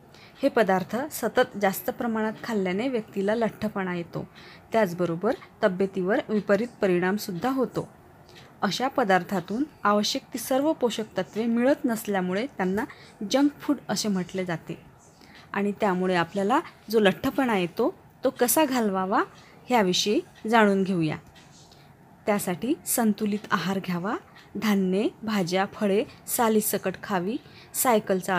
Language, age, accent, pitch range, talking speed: Marathi, 20-39, native, 190-235 Hz, 110 wpm